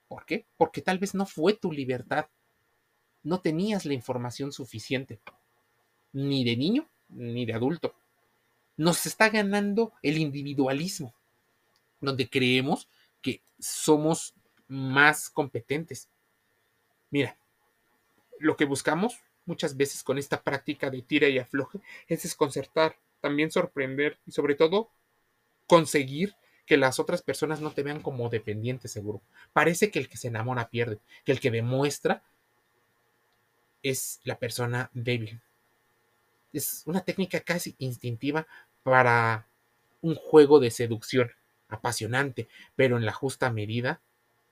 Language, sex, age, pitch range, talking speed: Spanish, male, 30-49, 120-150 Hz, 125 wpm